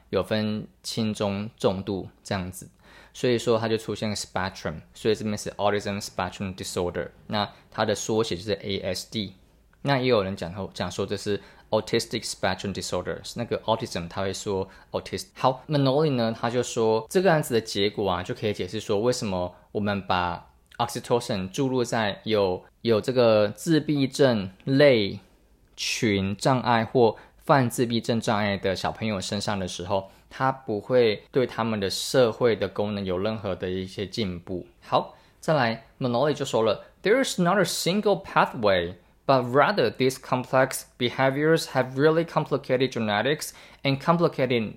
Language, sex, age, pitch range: Chinese, male, 20-39, 100-135 Hz